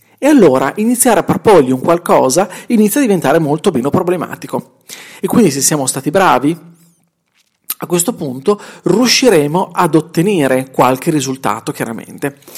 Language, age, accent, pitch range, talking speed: Italian, 40-59, native, 150-215 Hz, 135 wpm